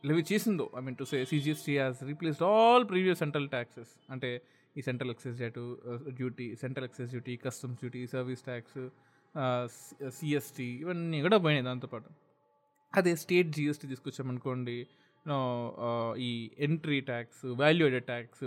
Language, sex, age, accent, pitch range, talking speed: Telugu, male, 20-39, native, 125-160 Hz, 125 wpm